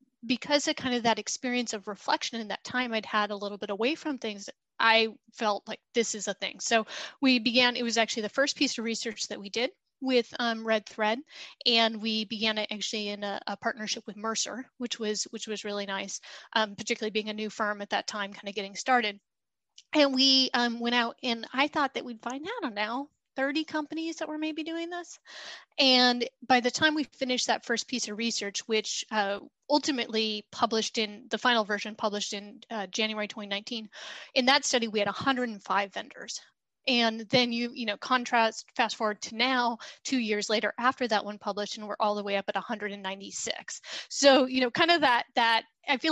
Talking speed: 210 wpm